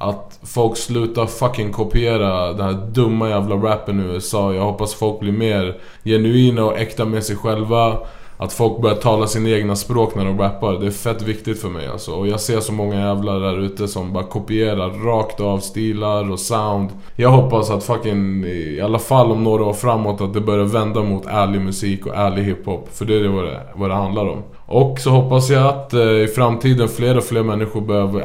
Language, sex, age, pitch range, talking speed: English, male, 20-39, 100-110 Hz, 210 wpm